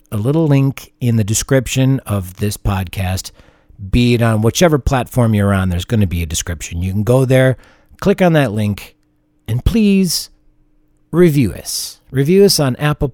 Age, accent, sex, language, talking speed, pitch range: 50-69, American, male, English, 175 wpm, 110-170 Hz